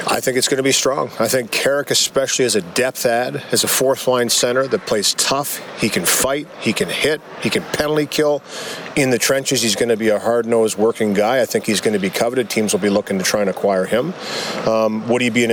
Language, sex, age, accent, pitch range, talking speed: English, male, 40-59, American, 115-135 Hz, 245 wpm